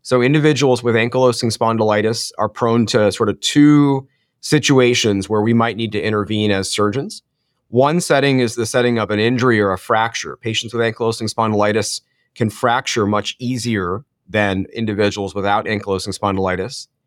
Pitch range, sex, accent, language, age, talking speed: 105-125 Hz, male, American, English, 30-49, 155 wpm